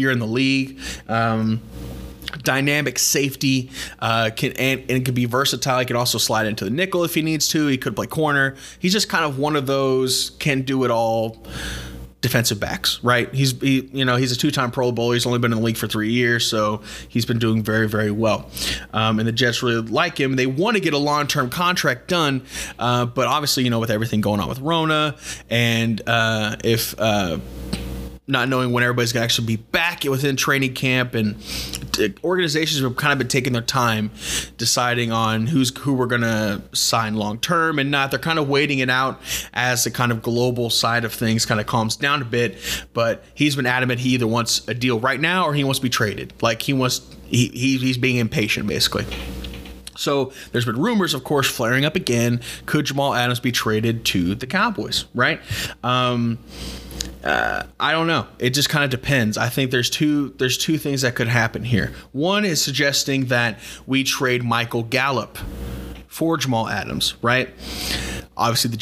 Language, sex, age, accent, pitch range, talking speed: English, male, 20-39, American, 115-135 Hz, 200 wpm